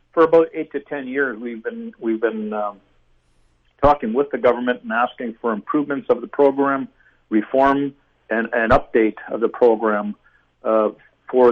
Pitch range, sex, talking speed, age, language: 110-130 Hz, male, 160 wpm, 50-69, English